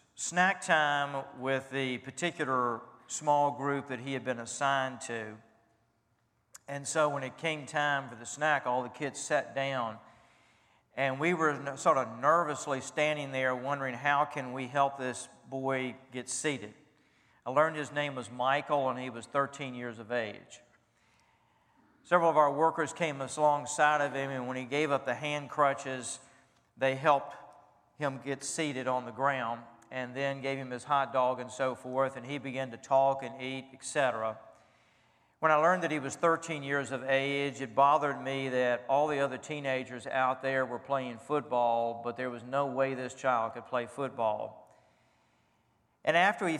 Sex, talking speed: male, 175 wpm